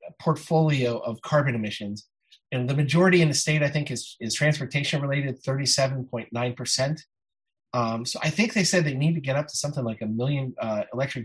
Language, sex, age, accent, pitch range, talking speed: English, male, 30-49, American, 120-150 Hz, 190 wpm